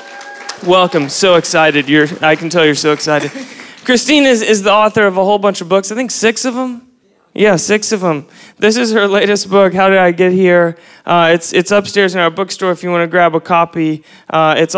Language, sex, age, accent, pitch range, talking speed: English, male, 20-39, American, 150-190 Hz, 225 wpm